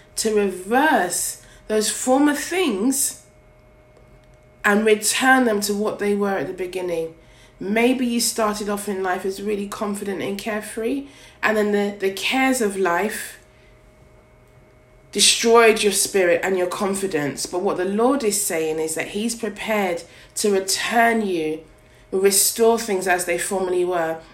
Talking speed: 145 wpm